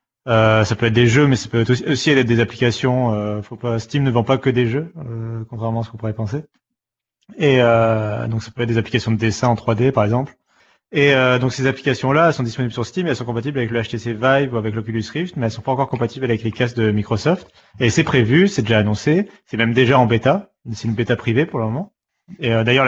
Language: French